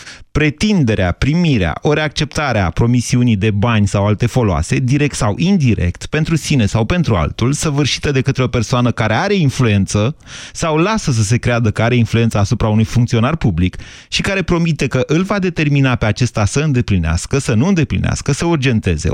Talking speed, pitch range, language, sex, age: 170 wpm, 110-145 Hz, Romanian, male, 30-49